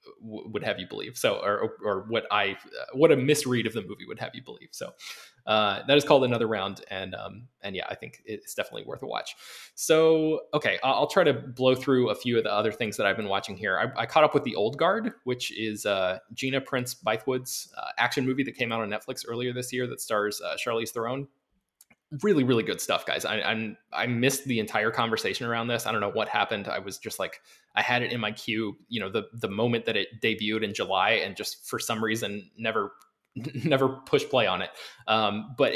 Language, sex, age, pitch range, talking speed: English, male, 20-39, 110-130 Hz, 230 wpm